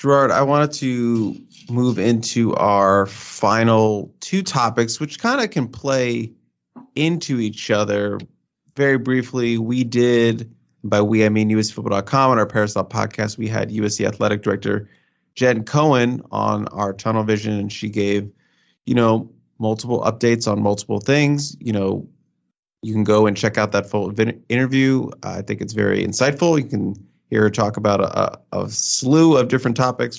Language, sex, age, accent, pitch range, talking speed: English, male, 30-49, American, 105-135 Hz, 160 wpm